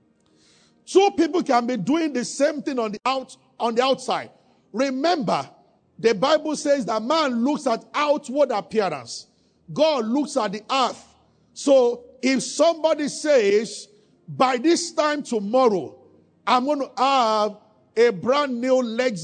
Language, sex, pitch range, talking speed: English, male, 220-285 Hz, 140 wpm